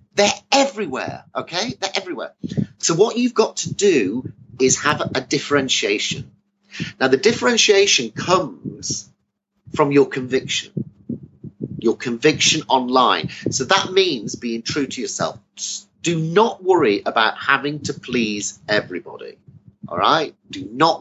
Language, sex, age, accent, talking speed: English, male, 40-59, British, 125 wpm